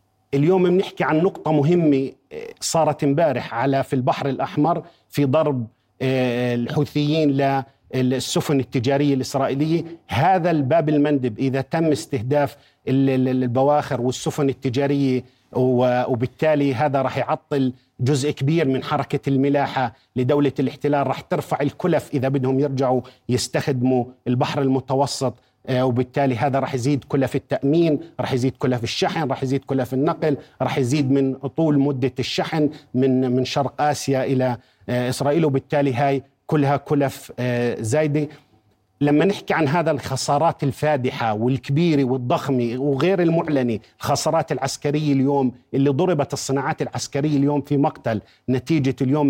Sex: male